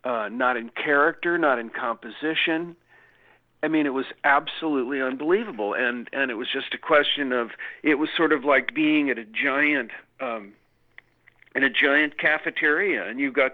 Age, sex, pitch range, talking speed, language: 50-69, male, 130-160 Hz, 170 wpm, English